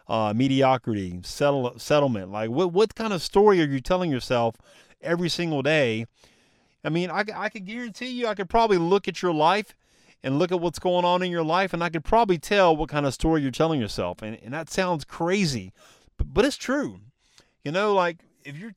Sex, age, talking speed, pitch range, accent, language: male, 30-49, 210 wpm, 125-185 Hz, American, English